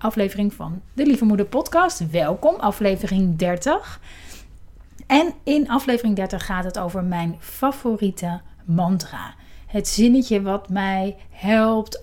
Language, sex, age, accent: Dutch, female, 30-49, Dutch